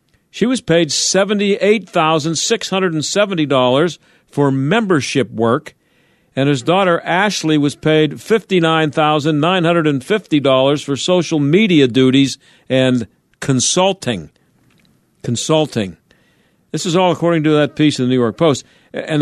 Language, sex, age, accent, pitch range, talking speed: English, male, 50-69, American, 150-185 Hz, 105 wpm